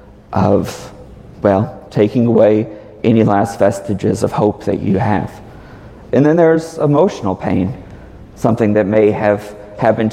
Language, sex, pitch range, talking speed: English, male, 100-120 Hz, 130 wpm